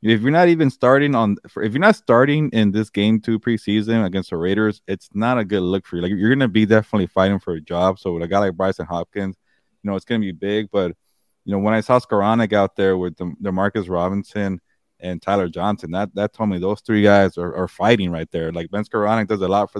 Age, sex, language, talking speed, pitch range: 20-39, male, English, 260 wpm, 95-115 Hz